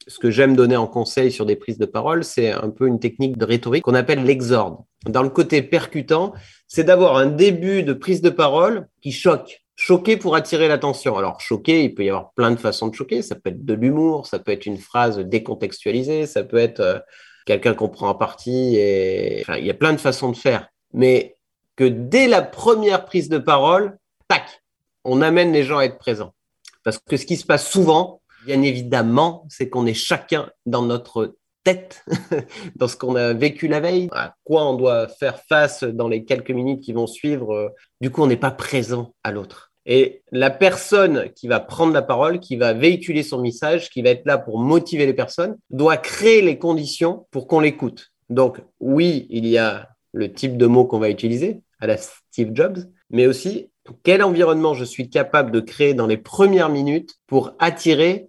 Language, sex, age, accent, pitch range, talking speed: French, male, 30-49, French, 120-170 Hz, 205 wpm